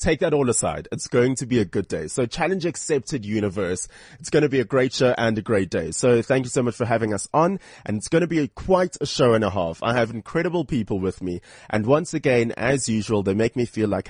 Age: 20-39